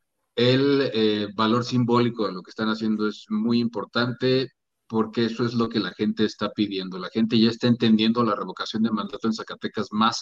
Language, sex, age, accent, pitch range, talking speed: Spanish, male, 40-59, Mexican, 105-120 Hz, 195 wpm